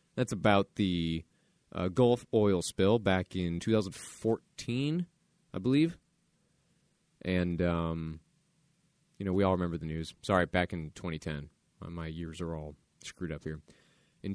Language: English